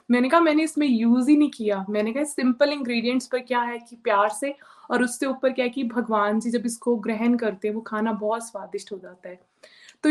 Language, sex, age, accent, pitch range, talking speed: Hindi, female, 20-39, native, 205-245 Hz, 230 wpm